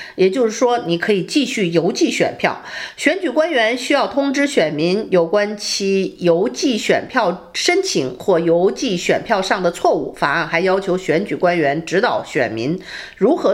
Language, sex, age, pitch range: Chinese, female, 50-69, 170-285 Hz